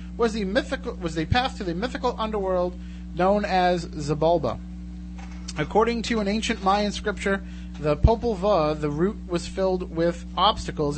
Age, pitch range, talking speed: 30-49, 145-195 Hz, 155 wpm